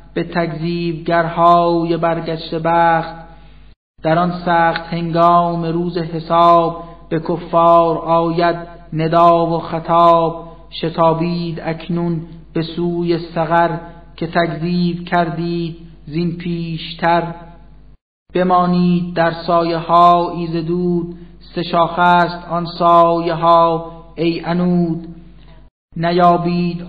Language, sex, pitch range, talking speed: Persian, male, 165-175 Hz, 90 wpm